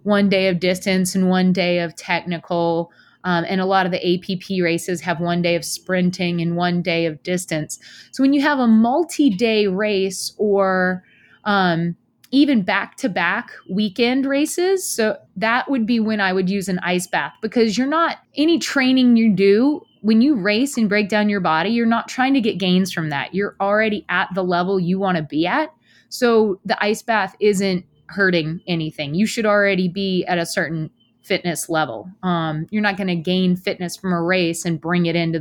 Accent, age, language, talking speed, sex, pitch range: American, 20-39, English, 195 wpm, female, 170-210 Hz